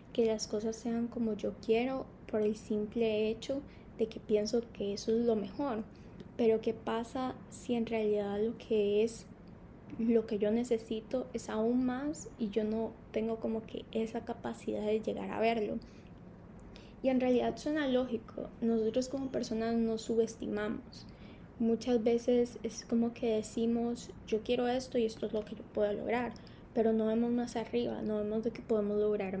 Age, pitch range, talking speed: 10-29, 220-245 Hz, 175 wpm